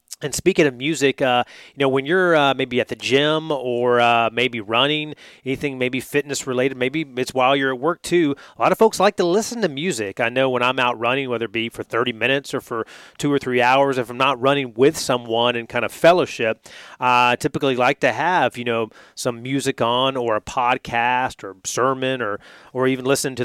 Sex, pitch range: male, 120-140 Hz